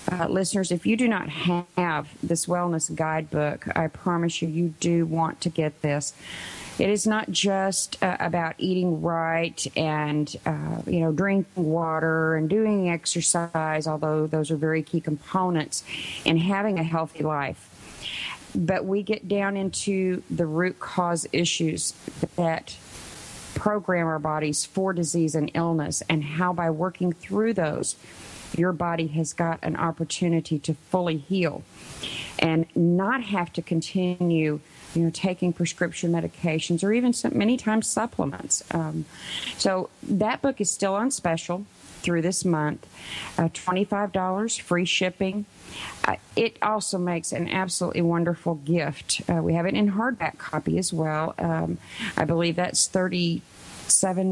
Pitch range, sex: 160-185 Hz, female